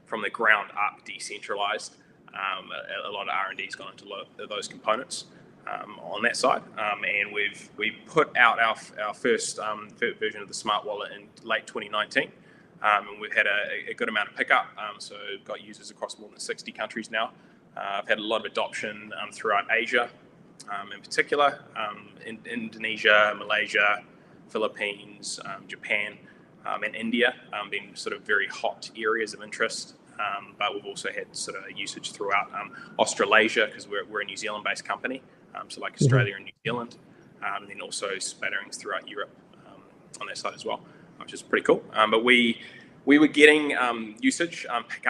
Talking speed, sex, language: 195 wpm, male, English